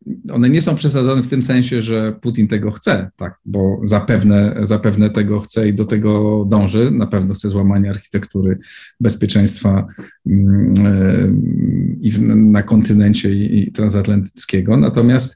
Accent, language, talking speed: native, Polish, 130 wpm